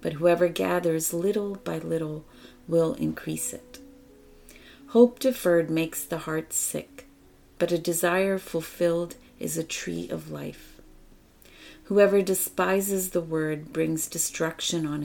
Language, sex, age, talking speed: English, female, 30-49, 125 wpm